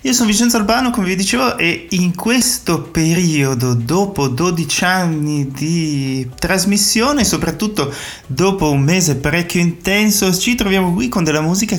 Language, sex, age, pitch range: Italian, male, 30-49, 120-175 Hz